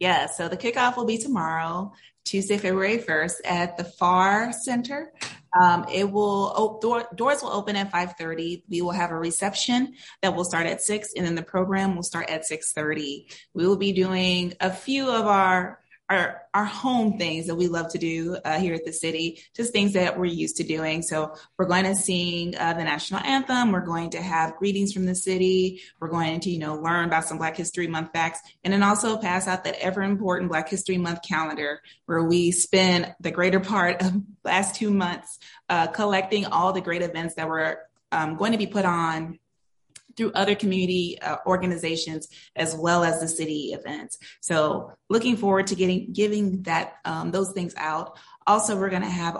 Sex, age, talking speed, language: female, 20-39, 200 wpm, English